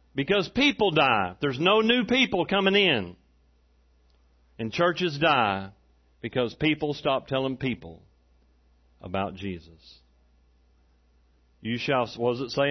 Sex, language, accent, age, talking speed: male, English, American, 40-59, 120 wpm